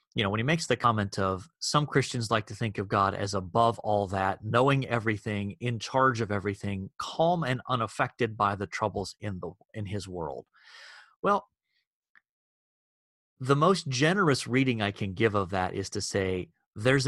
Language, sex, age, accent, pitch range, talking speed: English, male, 30-49, American, 100-130 Hz, 170 wpm